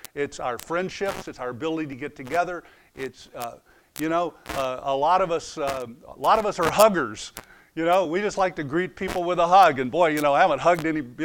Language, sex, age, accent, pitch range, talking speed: English, male, 50-69, American, 125-160 Hz, 240 wpm